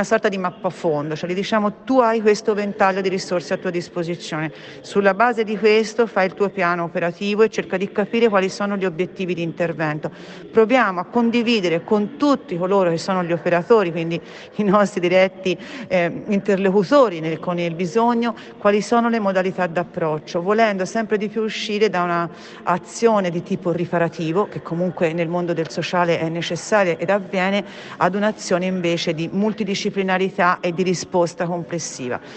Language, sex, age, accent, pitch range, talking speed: Italian, female, 40-59, native, 170-205 Hz, 165 wpm